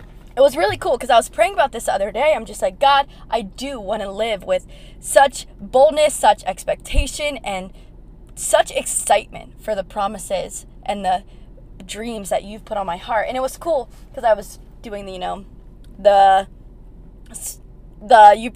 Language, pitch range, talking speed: English, 200-270 Hz, 180 wpm